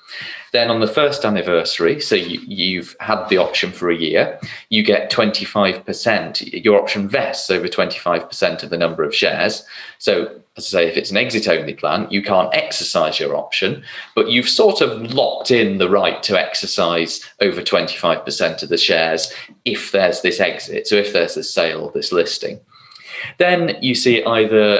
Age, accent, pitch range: 30-49, British, 95-130 Hz